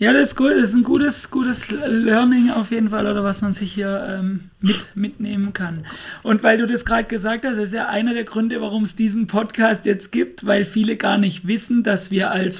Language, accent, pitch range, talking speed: German, German, 190-235 Hz, 230 wpm